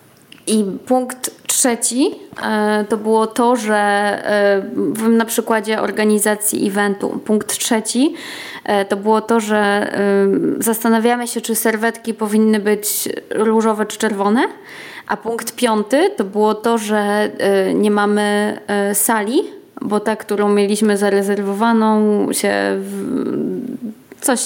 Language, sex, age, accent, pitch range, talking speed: Polish, female, 20-39, native, 205-235 Hz, 105 wpm